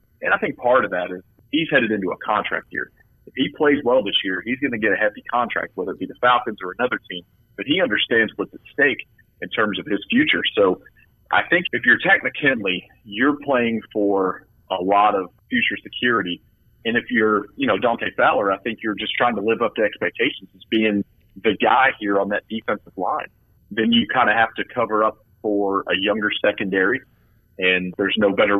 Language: English